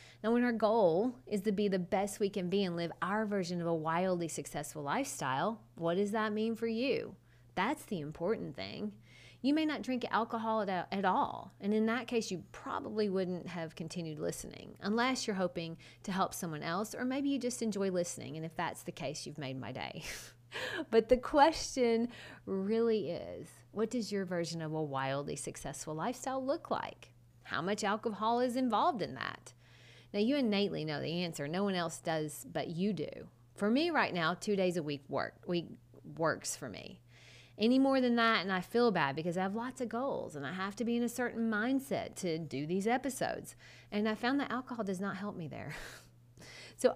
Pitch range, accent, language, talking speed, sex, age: 165-230 Hz, American, English, 200 wpm, female, 30-49